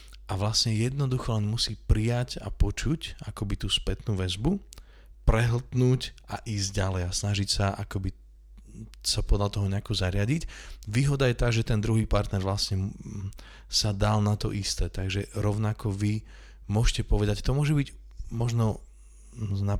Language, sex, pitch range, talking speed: Slovak, male, 95-110 Hz, 145 wpm